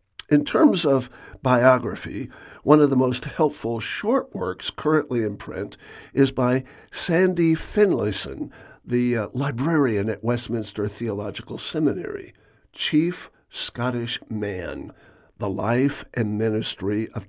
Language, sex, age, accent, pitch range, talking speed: English, male, 60-79, American, 110-135 Hz, 110 wpm